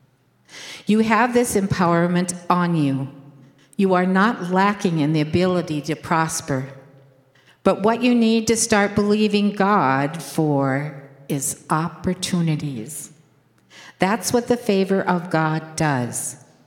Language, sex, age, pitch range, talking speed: English, female, 60-79, 140-190 Hz, 120 wpm